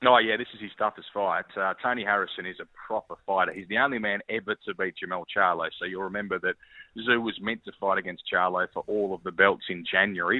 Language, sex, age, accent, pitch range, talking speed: English, male, 30-49, Australian, 95-115 Hz, 240 wpm